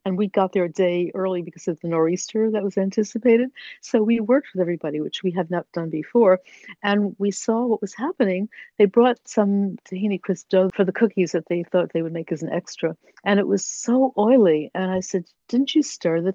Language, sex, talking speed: English, female, 225 wpm